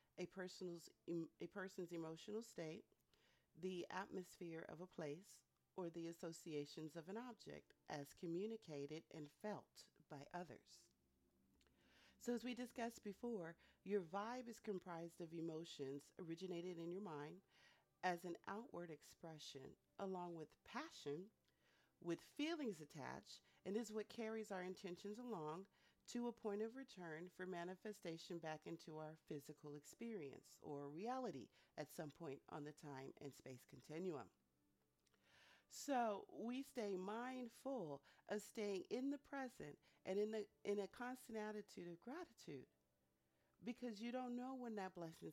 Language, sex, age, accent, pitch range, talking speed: English, female, 40-59, American, 155-215 Hz, 135 wpm